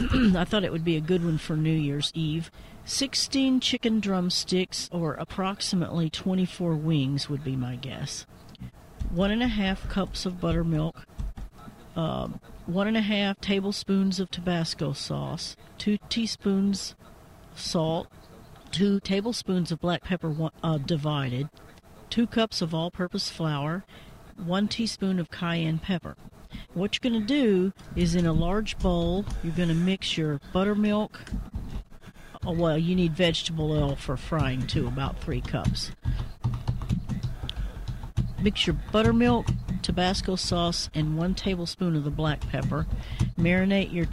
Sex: female